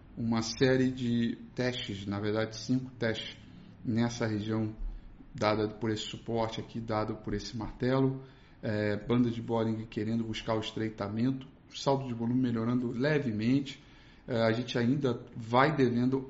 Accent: Brazilian